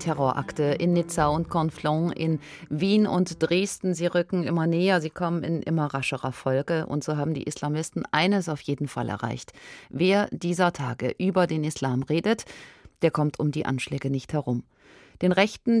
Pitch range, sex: 135-175 Hz, female